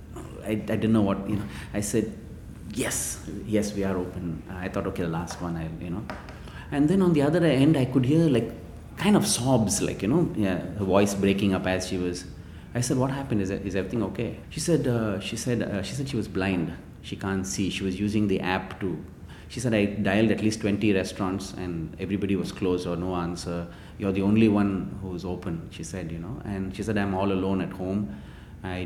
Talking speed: 230 wpm